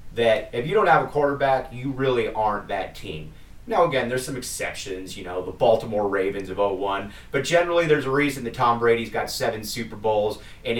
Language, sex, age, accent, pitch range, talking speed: English, male, 30-49, American, 100-120 Hz, 205 wpm